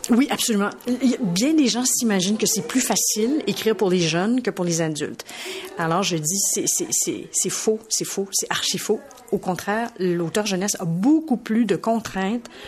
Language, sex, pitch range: French, female, 180-225 Hz